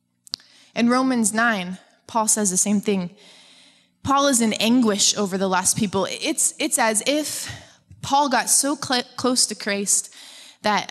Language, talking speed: English, 150 wpm